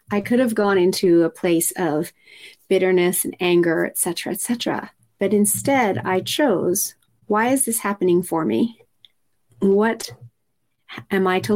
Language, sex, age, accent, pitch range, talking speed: English, female, 30-49, American, 180-230 Hz, 150 wpm